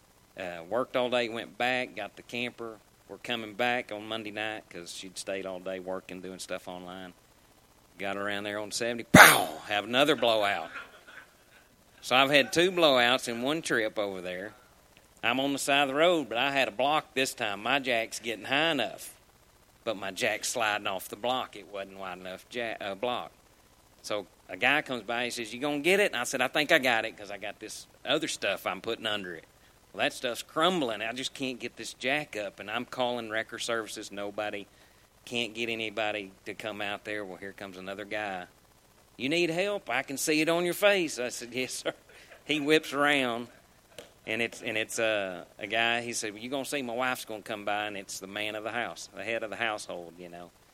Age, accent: 40-59, American